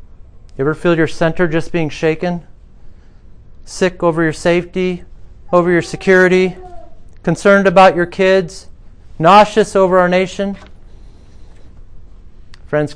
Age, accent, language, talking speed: 40-59, American, English, 110 wpm